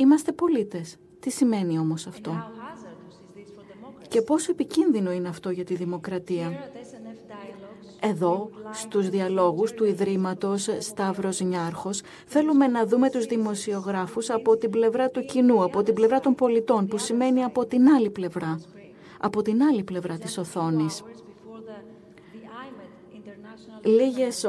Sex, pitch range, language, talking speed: female, 190-230 Hz, Greek, 120 wpm